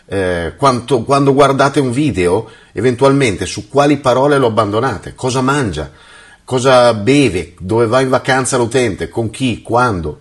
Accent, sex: native, male